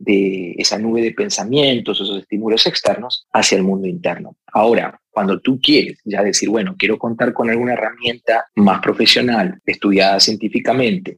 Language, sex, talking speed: Spanish, male, 150 wpm